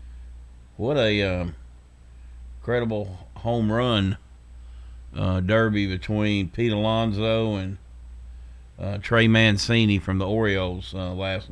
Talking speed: 105 wpm